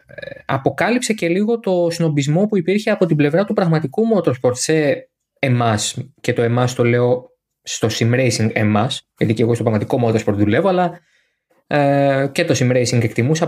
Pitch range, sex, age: 120-165 Hz, male, 20-39